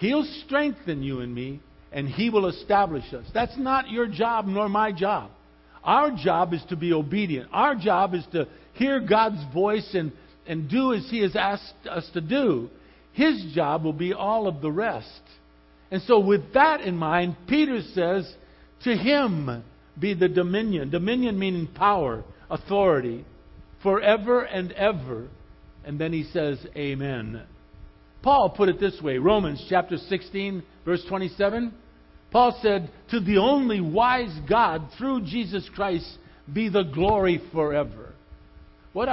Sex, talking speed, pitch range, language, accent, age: male, 150 wpm, 145-215 Hz, English, American, 50-69